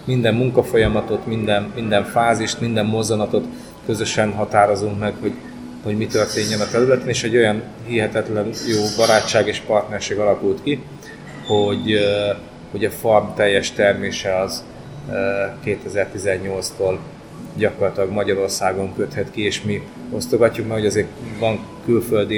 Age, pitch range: 30-49, 100-120 Hz